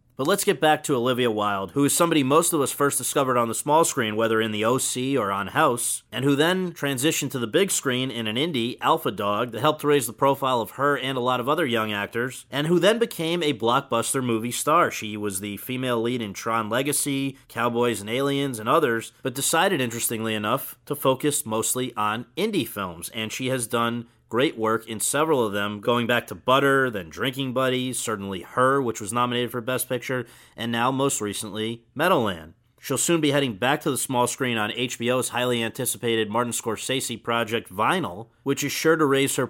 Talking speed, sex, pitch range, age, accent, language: 210 wpm, male, 110-135 Hz, 30-49, American, English